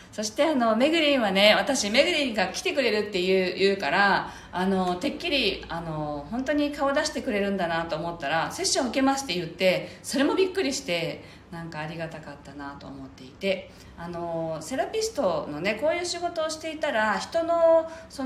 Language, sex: Japanese, female